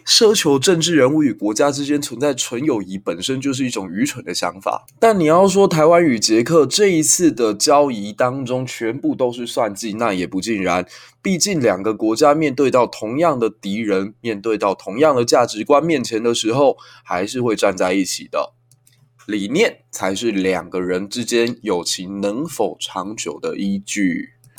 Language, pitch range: Chinese, 100-150 Hz